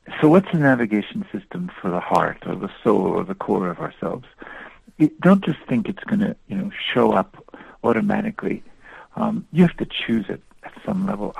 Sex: male